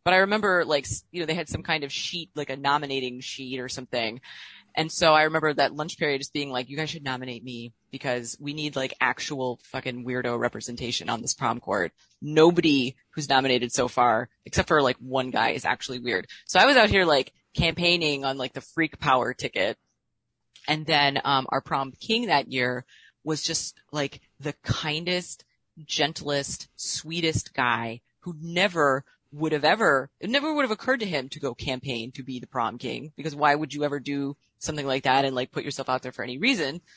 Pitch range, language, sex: 125-155 Hz, English, female